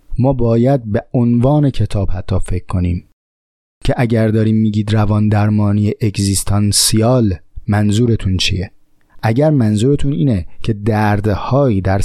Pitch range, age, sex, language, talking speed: 100-130 Hz, 30-49, male, Persian, 115 wpm